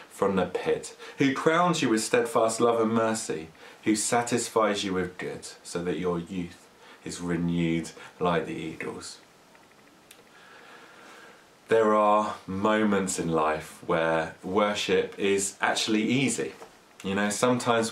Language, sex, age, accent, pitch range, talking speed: English, male, 30-49, British, 90-110 Hz, 125 wpm